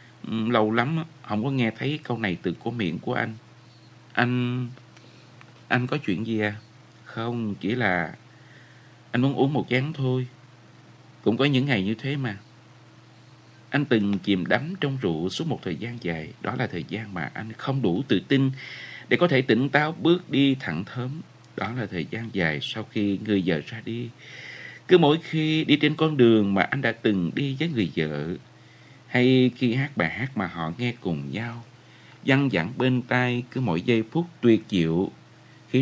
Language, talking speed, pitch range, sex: Vietnamese, 190 wpm, 110-135 Hz, male